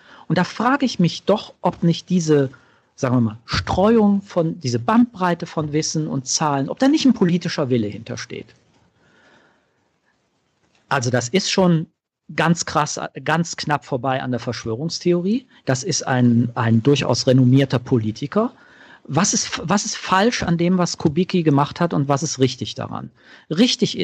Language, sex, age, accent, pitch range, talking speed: German, male, 40-59, German, 130-180 Hz, 155 wpm